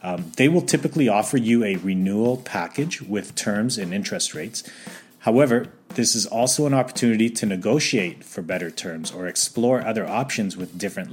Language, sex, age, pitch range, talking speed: English, male, 30-49, 105-130 Hz, 165 wpm